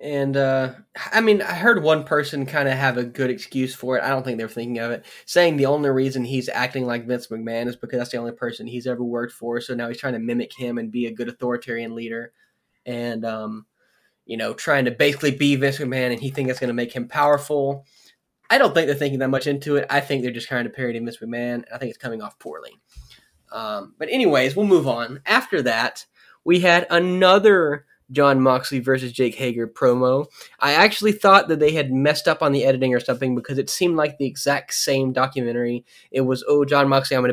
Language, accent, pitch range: English, American, 125-145 Hz